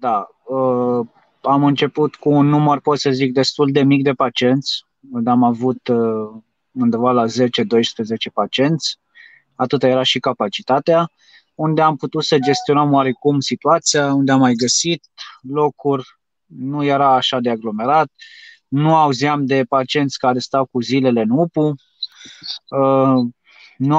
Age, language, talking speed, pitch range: 20-39, Romanian, 135 wpm, 130-150 Hz